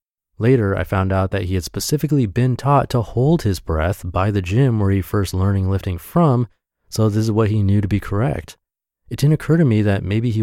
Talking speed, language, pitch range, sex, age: 230 wpm, English, 90-115 Hz, male, 30-49